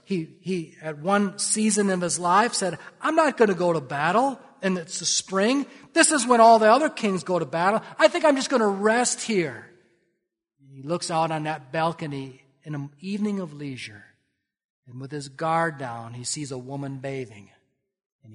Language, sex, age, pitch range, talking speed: English, male, 40-59, 145-220 Hz, 195 wpm